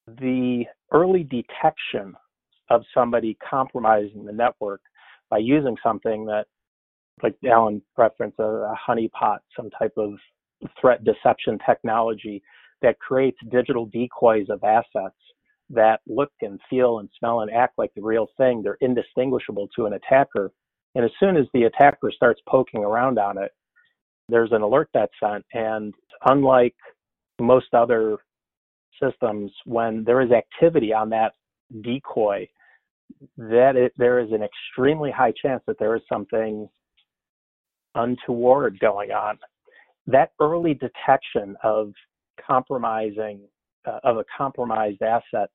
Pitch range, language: 110-130 Hz, English